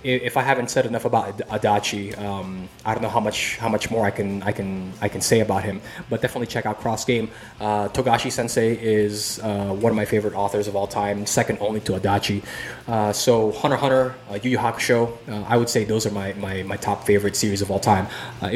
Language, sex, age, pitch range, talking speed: English, male, 20-39, 105-125 Hz, 235 wpm